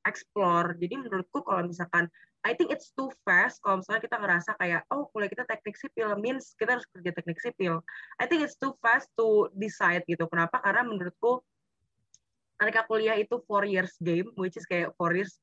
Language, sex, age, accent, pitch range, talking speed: Indonesian, female, 20-39, native, 185-225 Hz, 185 wpm